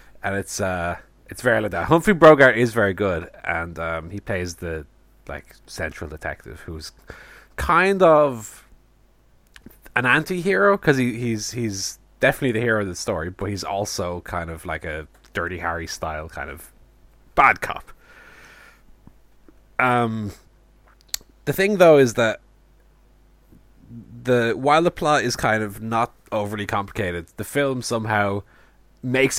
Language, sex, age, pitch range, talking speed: English, male, 20-39, 90-130 Hz, 145 wpm